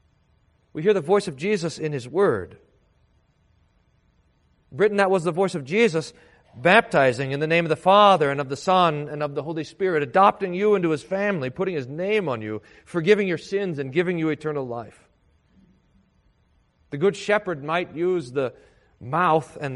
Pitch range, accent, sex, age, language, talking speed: 145-210 Hz, American, male, 40-59, English, 175 wpm